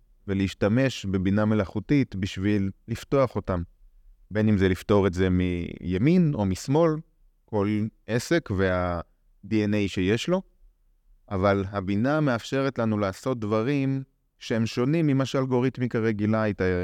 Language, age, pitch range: Hebrew, 30-49, 95-120 Hz